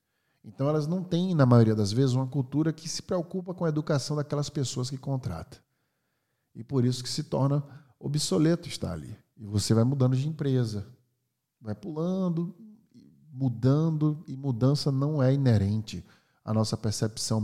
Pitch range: 115-145 Hz